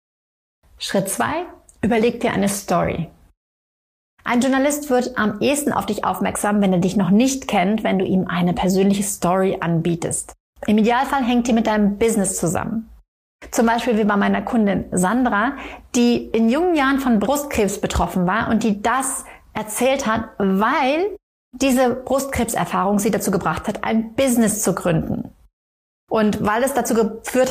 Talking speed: 155 wpm